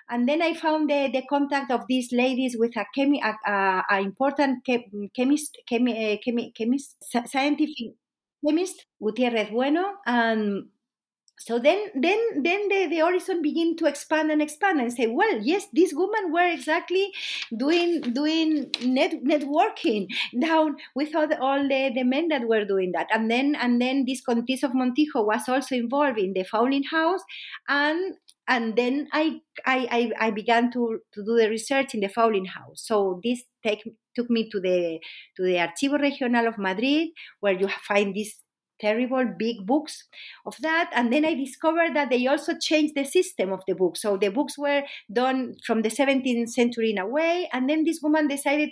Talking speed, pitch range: 180 wpm, 230-305 Hz